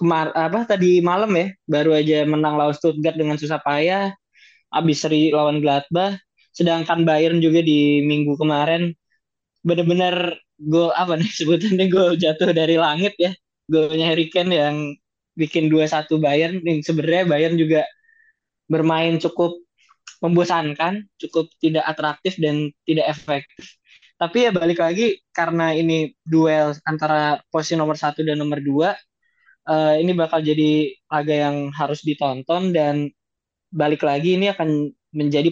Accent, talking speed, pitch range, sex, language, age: native, 135 wpm, 150-180 Hz, male, Indonesian, 20-39